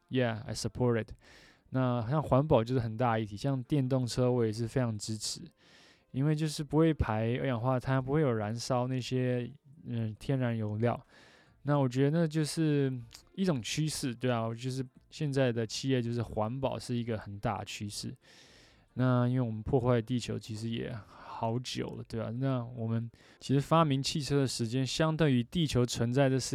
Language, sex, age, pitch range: Chinese, male, 20-39, 115-135 Hz